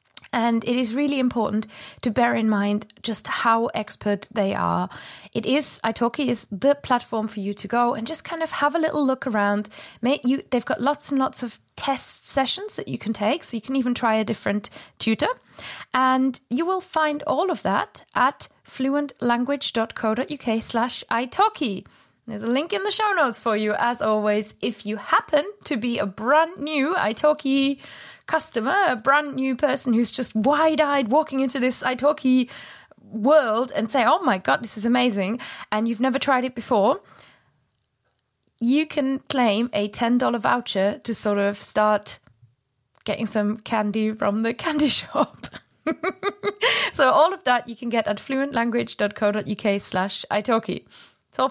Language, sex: English, female